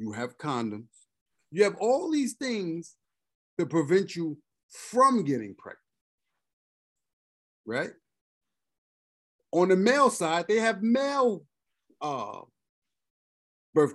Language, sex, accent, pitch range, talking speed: English, male, American, 135-200 Hz, 105 wpm